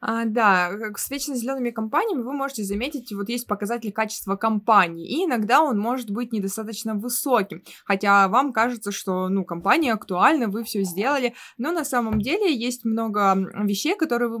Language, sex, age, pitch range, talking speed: Russian, female, 20-39, 200-250 Hz, 160 wpm